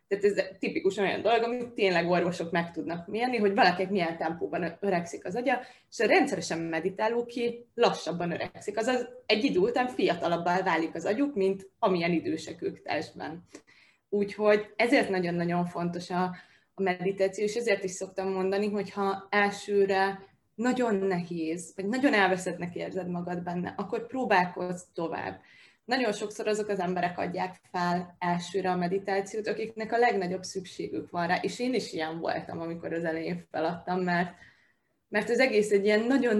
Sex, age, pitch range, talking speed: female, 20-39, 180-215 Hz, 155 wpm